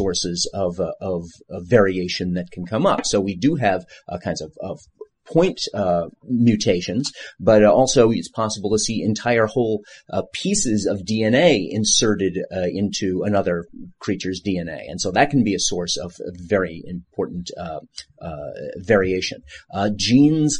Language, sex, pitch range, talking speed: English, male, 95-125 Hz, 160 wpm